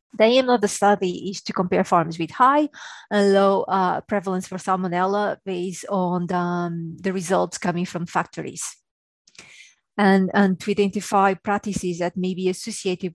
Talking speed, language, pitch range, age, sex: 155 wpm, English, 180-205 Hz, 30-49, female